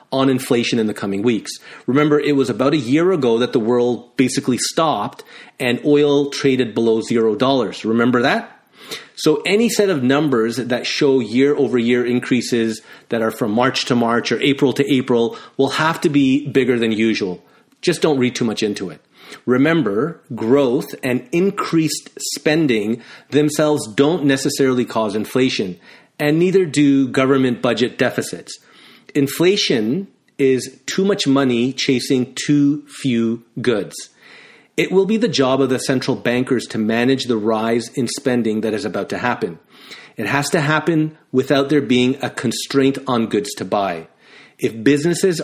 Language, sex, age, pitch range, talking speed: English, male, 30-49, 120-145 Hz, 160 wpm